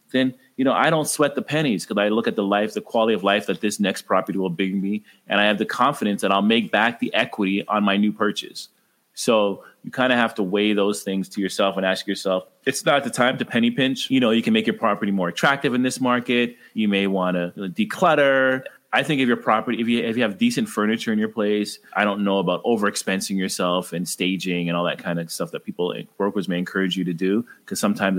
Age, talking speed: 30-49, 250 wpm